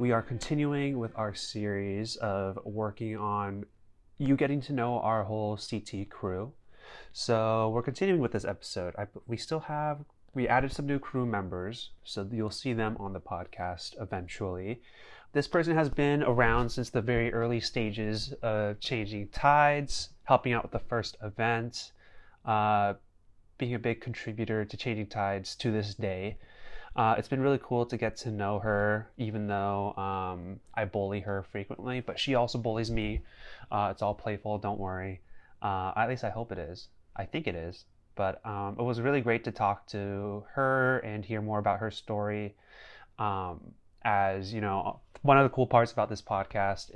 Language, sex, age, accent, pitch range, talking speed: English, male, 30-49, American, 100-120 Hz, 175 wpm